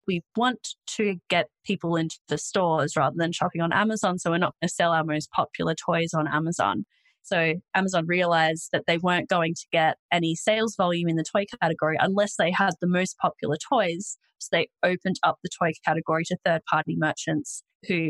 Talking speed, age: 200 wpm, 20-39